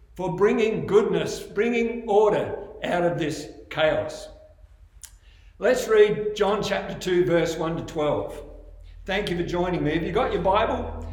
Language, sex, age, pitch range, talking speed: English, male, 60-79, 165-225 Hz, 150 wpm